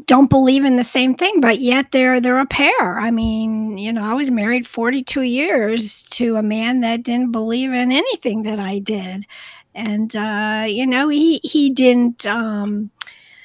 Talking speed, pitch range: 185 wpm, 215-265 Hz